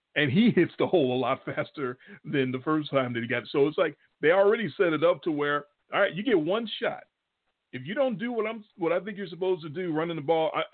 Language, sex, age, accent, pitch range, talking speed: English, male, 40-59, American, 120-170 Hz, 270 wpm